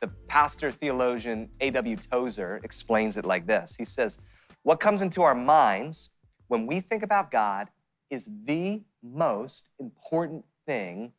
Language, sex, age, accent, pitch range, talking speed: English, male, 30-49, American, 115-150 Hz, 140 wpm